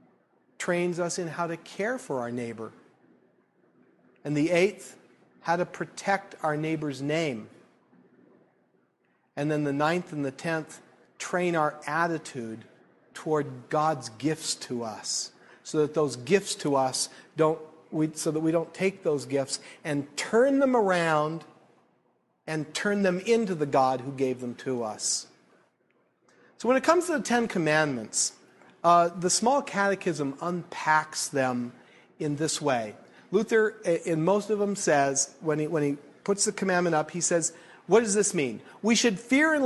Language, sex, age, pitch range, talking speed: English, male, 50-69, 150-200 Hz, 155 wpm